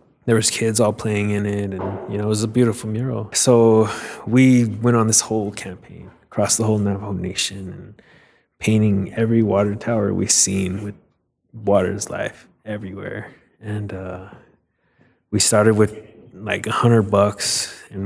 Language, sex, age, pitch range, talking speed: English, male, 20-39, 95-110 Hz, 160 wpm